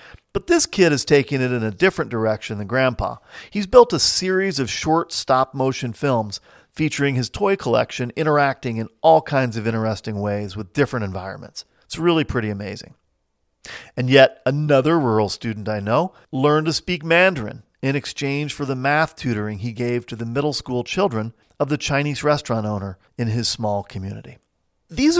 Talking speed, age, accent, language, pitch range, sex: 170 wpm, 40-59, American, English, 115-160 Hz, male